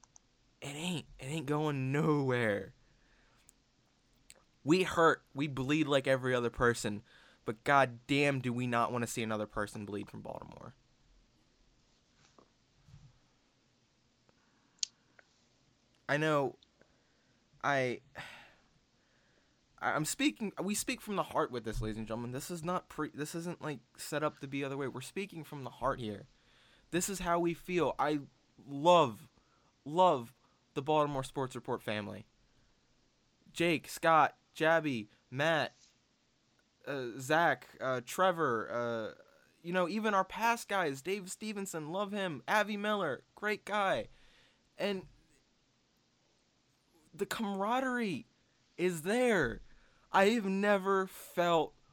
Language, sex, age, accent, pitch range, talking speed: English, male, 20-39, American, 125-180 Hz, 125 wpm